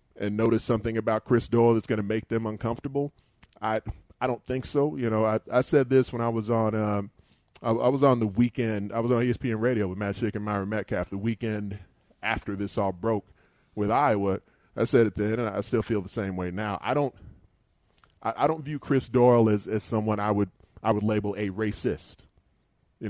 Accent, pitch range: American, 100-115 Hz